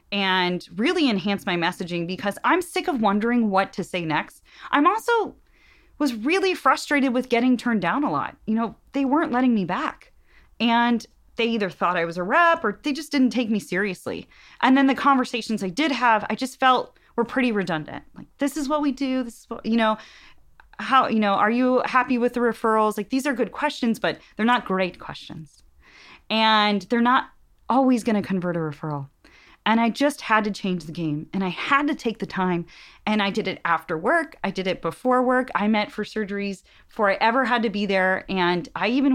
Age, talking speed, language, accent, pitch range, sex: 30-49, 215 wpm, English, American, 190-255 Hz, female